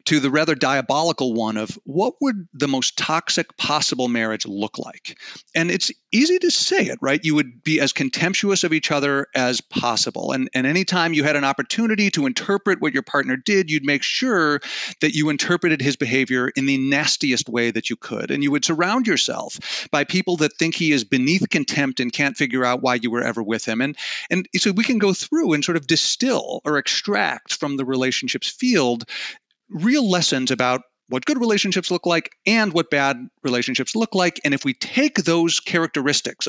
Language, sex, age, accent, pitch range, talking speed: English, male, 40-59, American, 135-190 Hz, 195 wpm